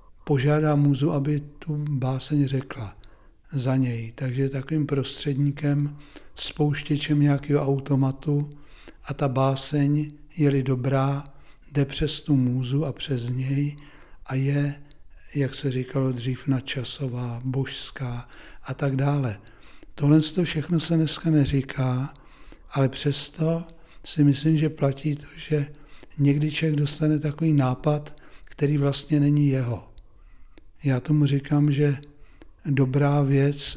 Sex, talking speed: male, 115 wpm